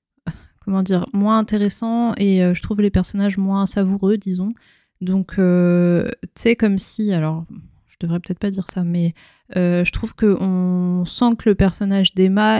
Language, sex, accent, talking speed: French, female, French, 175 wpm